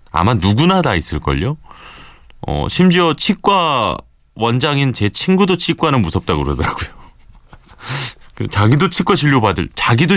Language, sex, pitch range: Korean, male, 80-130 Hz